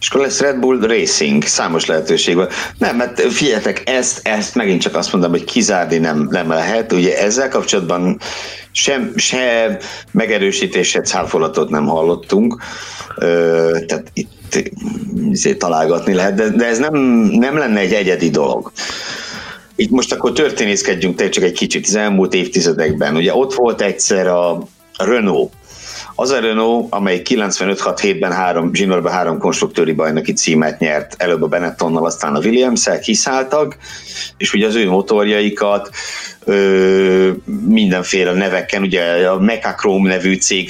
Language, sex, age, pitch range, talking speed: Hungarian, male, 60-79, 90-125 Hz, 140 wpm